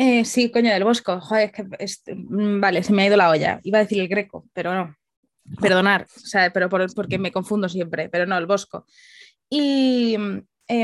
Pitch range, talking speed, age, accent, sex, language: 185-230 Hz, 205 wpm, 20-39, Spanish, female, Spanish